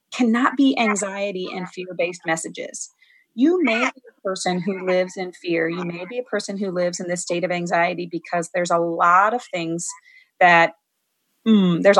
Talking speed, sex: 180 wpm, female